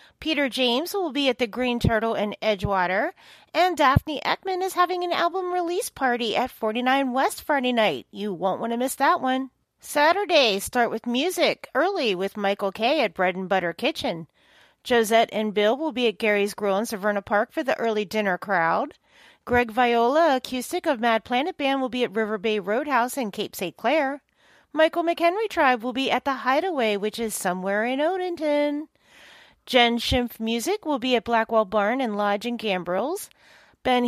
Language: English